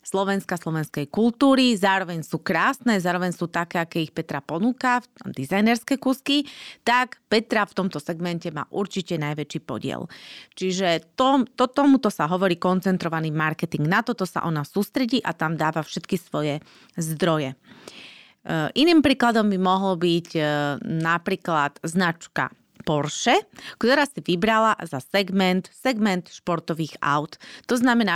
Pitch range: 165-230 Hz